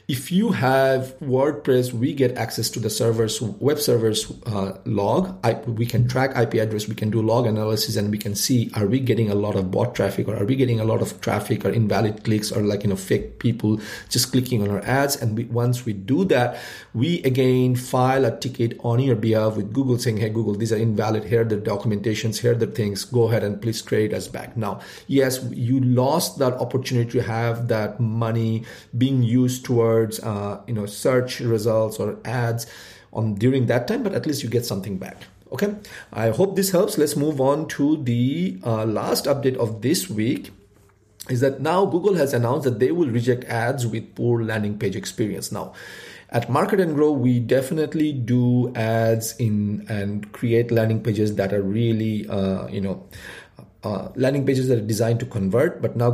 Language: English